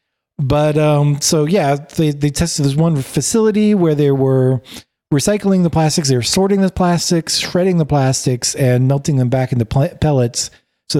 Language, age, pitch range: English, 40-59, 130-165 Hz